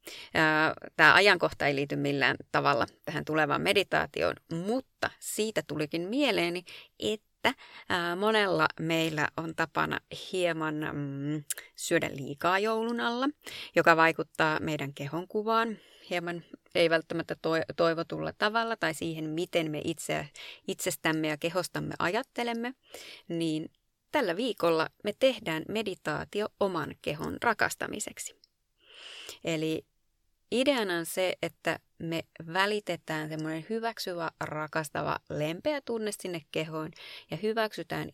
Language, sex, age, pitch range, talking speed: Finnish, female, 30-49, 155-215 Hz, 105 wpm